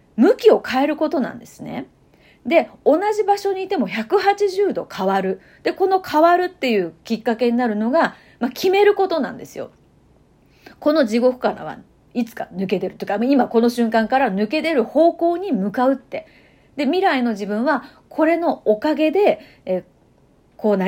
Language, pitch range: Japanese, 215-350 Hz